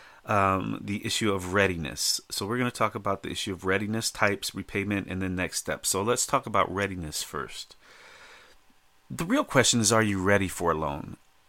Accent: American